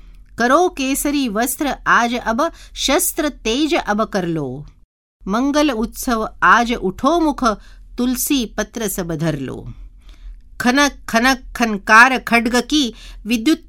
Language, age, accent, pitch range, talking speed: Marathi, 50-69, native, 170-245 Hz, 90 wpm